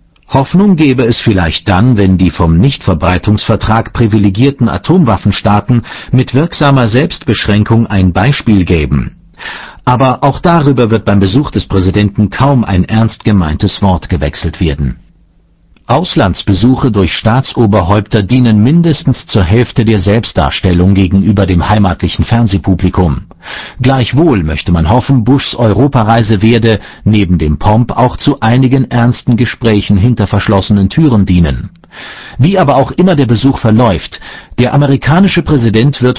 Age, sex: 50-69, male